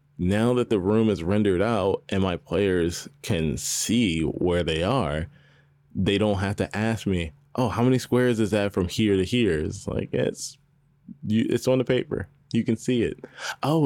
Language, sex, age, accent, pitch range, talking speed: English, male, 20-39, American, 95-140 Hz, 190 wpm